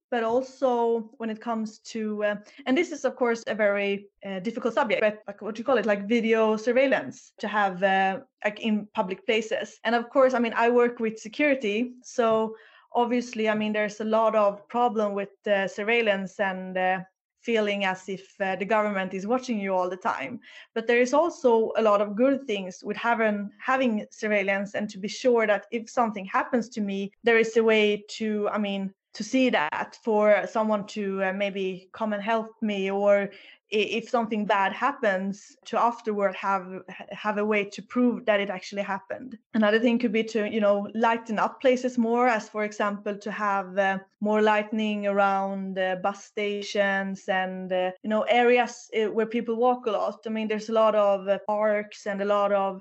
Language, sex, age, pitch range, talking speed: English, female, 20-39, 200-230 Hz, 195 wpm